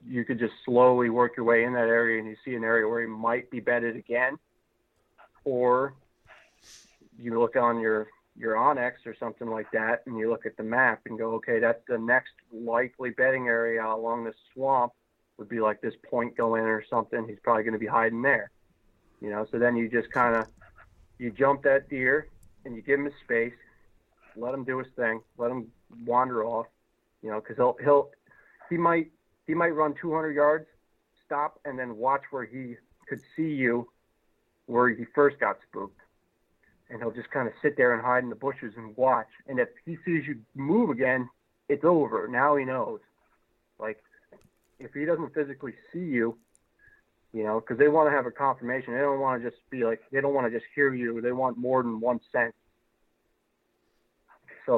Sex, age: male, 40-59